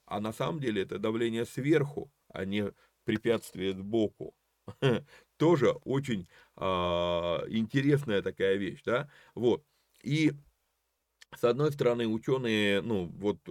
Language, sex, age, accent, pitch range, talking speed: Russian, male, 30-49, native, 105-155 Hz, 115 wpm